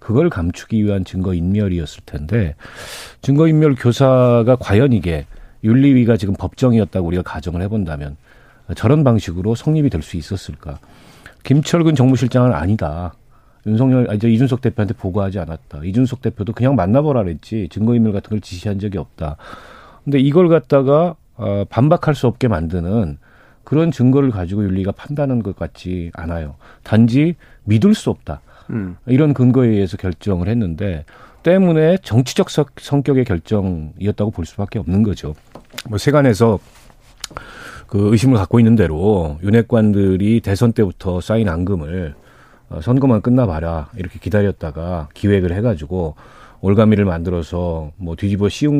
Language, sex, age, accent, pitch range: Korean, male, 40-59, native, 90-125 Hz